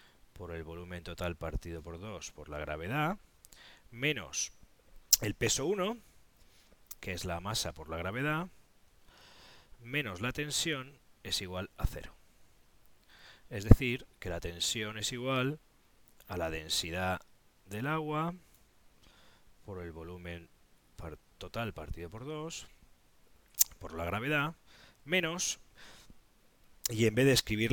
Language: Spanish